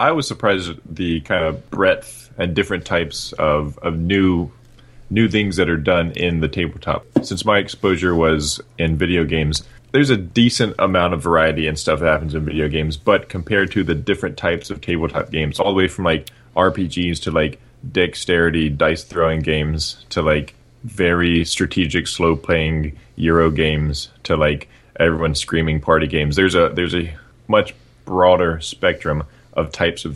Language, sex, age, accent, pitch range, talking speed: English, male, 10-29, American, 75-95 Hz, 175 wpm